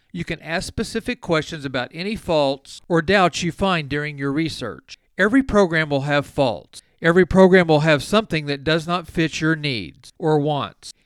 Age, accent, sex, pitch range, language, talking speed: 40-59, American, male, 145-190 Hz, English, 180 wpm